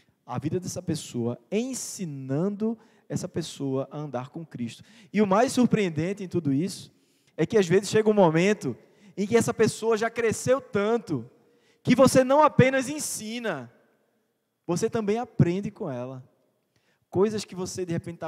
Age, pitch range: 20-39, 135-200 Hz